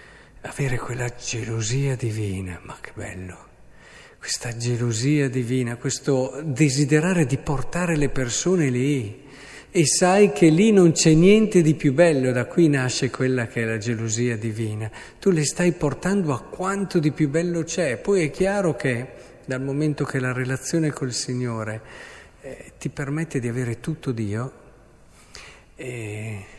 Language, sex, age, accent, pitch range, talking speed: Italian, male, 50-69, native, 110-145 Hz, 145 wpm